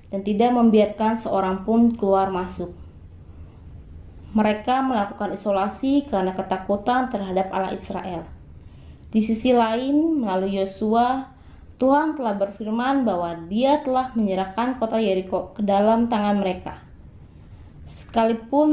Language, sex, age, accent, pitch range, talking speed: Indonesian, female, 20-39, native, 190-240 Hz, 110 wpm